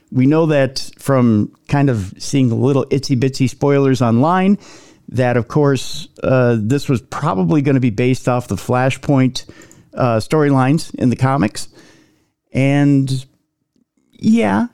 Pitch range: 120-155 Hz